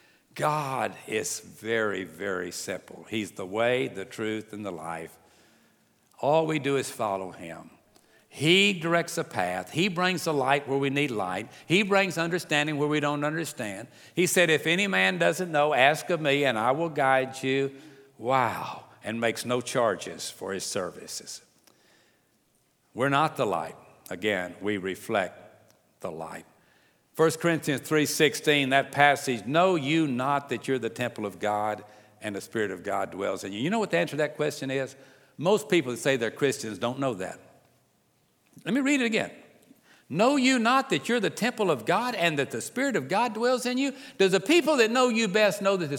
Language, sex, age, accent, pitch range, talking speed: English, male, 60-79, American, 120-190 Hz, 190 wpm